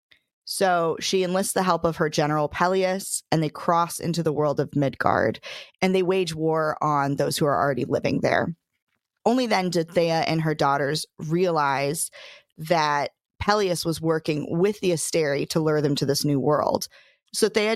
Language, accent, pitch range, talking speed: English, American, 150-185 Hz, 175 wpm